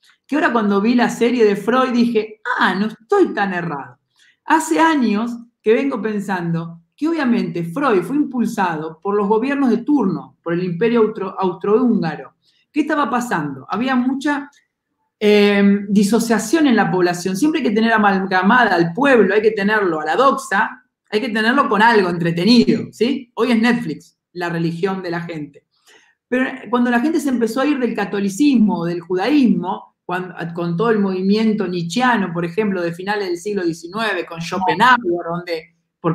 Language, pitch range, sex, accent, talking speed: Spanish, 185-255 Hz, male, Argentinian, 165 wpm